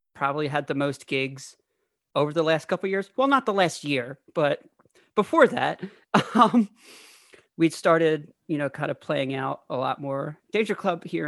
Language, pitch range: English, 140-200 Hz